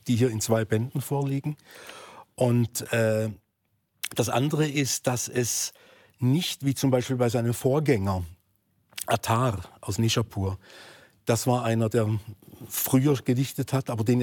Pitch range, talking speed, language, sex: 115-140 Hz, 135 wpm, German, male